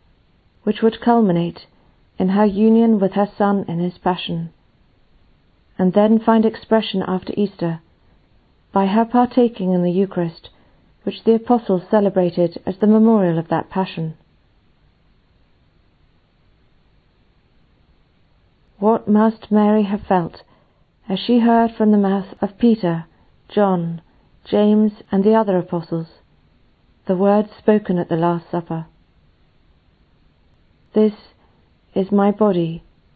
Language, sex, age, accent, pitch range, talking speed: English, female, 40-59, British, 170-215 Hz, 115 wpm